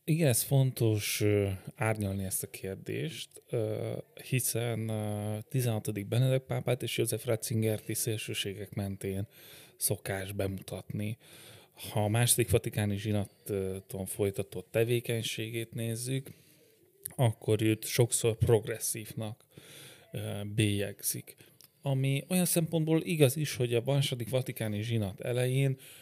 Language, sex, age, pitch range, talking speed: Hungarian, male, 30-49, 105-130 Hz, 95 wpm